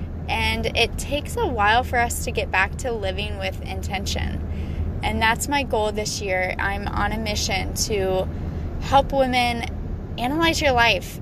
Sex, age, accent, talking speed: female, 10-29, American, 160 wpm